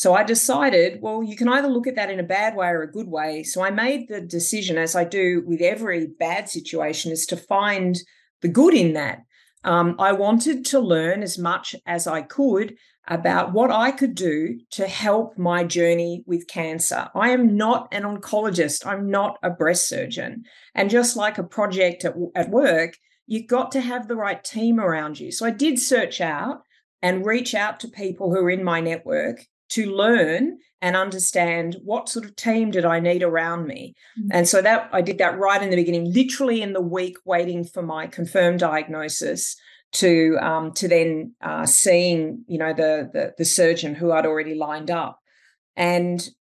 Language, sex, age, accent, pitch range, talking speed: English, female, 40-59, Australian, 170-220 Hz, 195 wpm